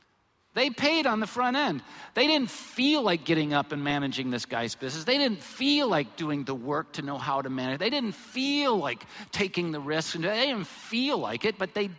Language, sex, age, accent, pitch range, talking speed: English, male, 50-69, American, 160-260 Hz, 215 wpm